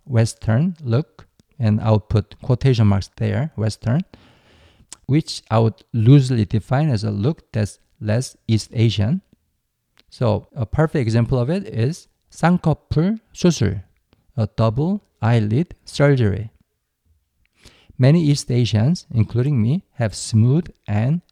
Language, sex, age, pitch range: Korean, male, 50-69, 105-140 Hz